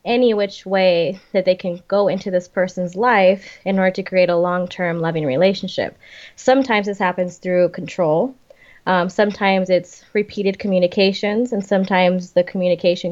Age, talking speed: 20-39, 150 wpm